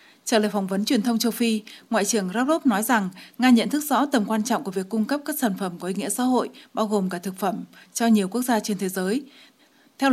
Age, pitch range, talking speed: 20-39, 200-245 Hz, 265 wpm